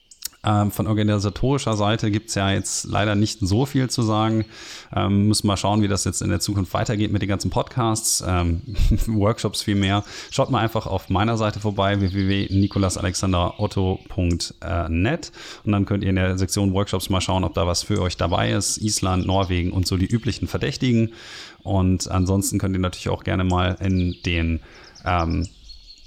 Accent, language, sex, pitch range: German, German, male, 90-105 Hz